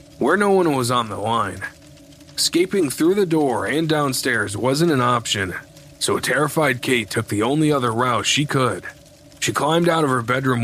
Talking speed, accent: 185 wpm, American